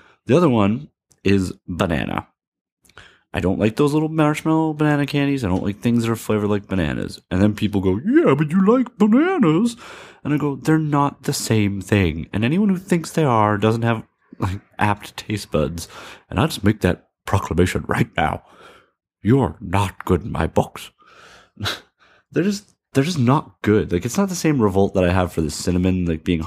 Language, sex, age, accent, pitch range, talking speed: English, male, 30-49, American, 90-125 Hz, 195 wpm